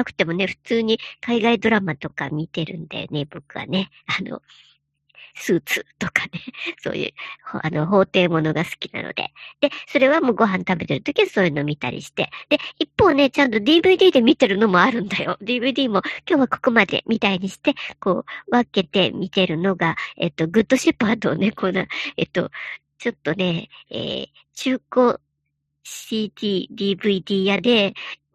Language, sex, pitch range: Japanese, male, 175-245 Hz